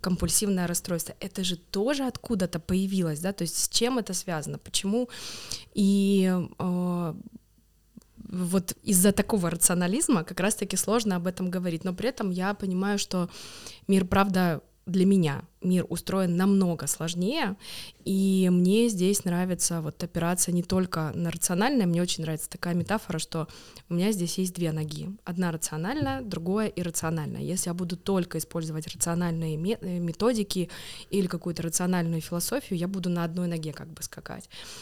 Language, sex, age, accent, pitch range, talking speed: Russian, female, 20-39, native, 170-195 Hz, 150 wpm